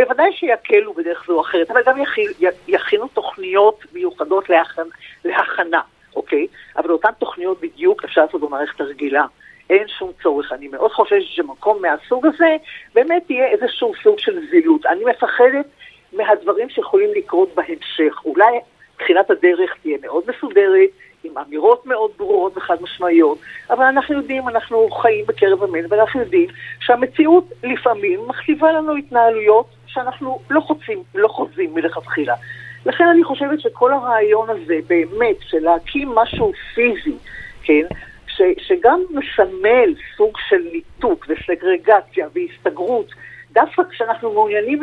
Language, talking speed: Hebrew, 130 wpm